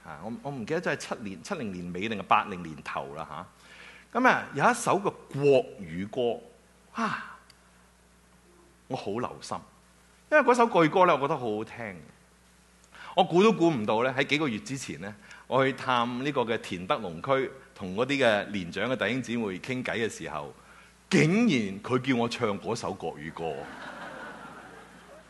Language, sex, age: English, male, 30-49